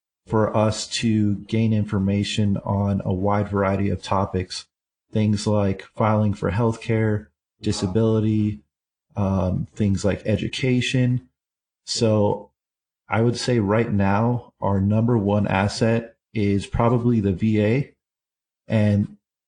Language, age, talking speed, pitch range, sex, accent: English, 30-49, 110 wpm, 100-110 Hz, male, American